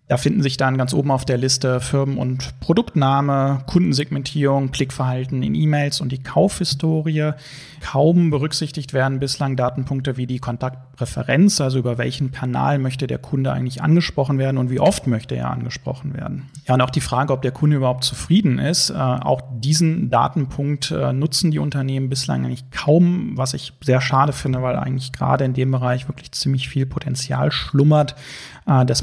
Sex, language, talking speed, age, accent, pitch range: male, German, 165 wpm, 30-49, German, 125-145 Hz